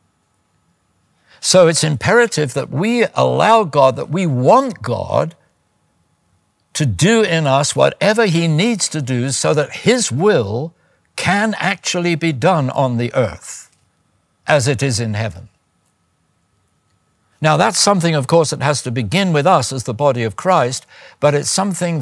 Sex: male